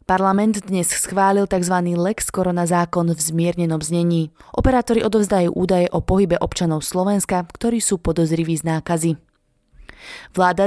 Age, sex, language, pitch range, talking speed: 20-39, female, Slovak, 165-195 Hz, 130 wpm